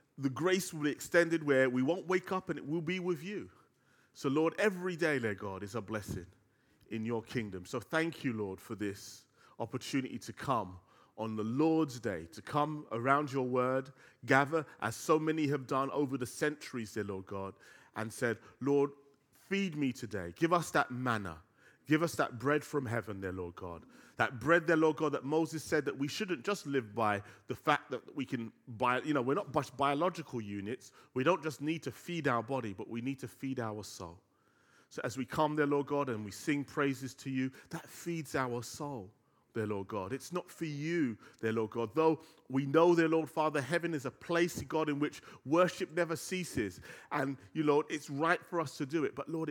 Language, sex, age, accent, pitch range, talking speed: English, male, 30-49, British, 115-160 Hz, 210 wpm